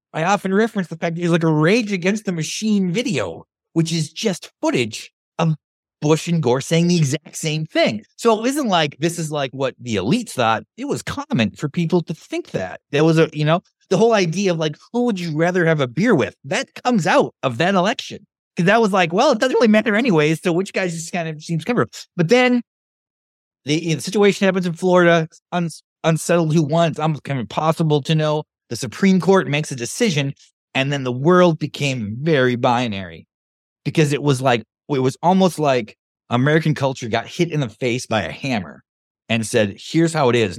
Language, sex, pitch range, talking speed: English, male, 130-180 Hz, 215 wpm